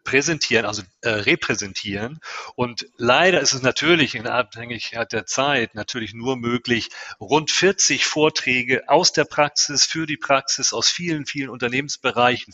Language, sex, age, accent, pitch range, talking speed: German, male, 40-59, German, 110-130 Hz, 140 wpm